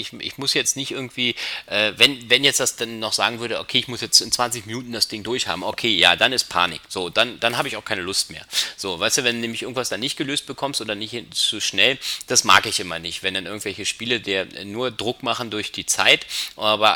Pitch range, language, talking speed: 85-110 Hz, German, 250 wpm